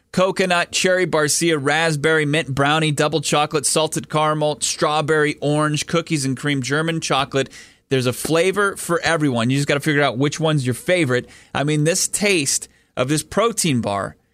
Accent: American